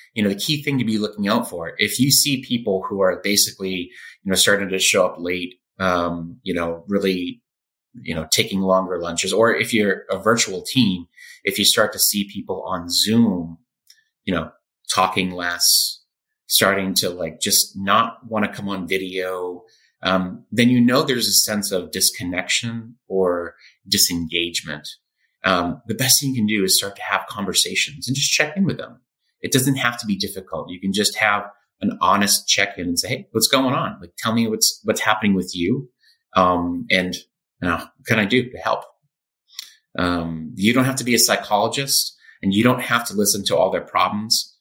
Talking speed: 195 wpm